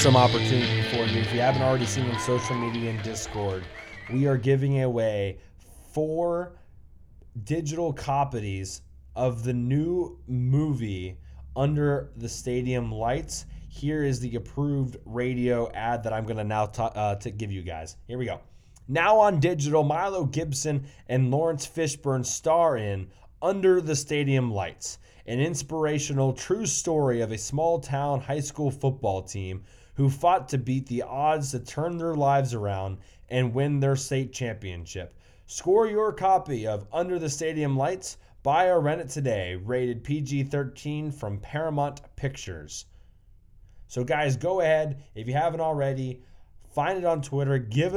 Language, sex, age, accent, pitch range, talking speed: English, male, 20-39, American, 110-145 Hz, 155 wpm